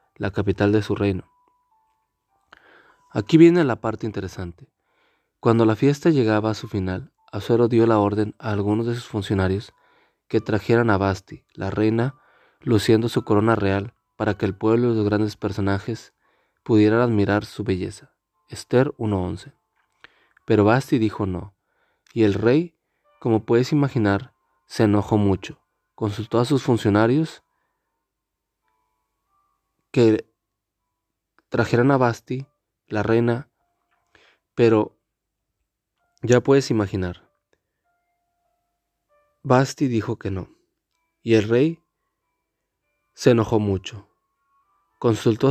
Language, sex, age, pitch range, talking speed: Spanish, male, 30-49, 105-130 Hz, 115 wpm